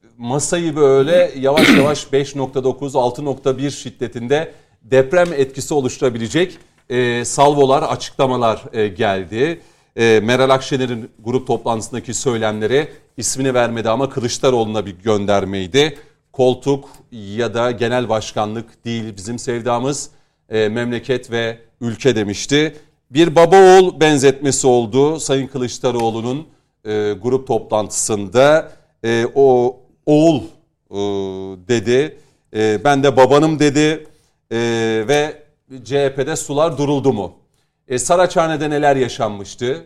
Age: 40-59